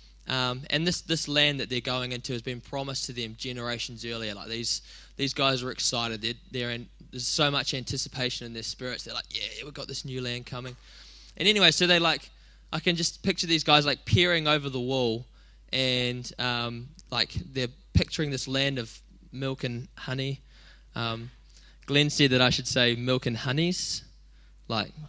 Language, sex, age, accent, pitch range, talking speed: English, male, 10-29, Australian, 125-155 Hz, 190 wpm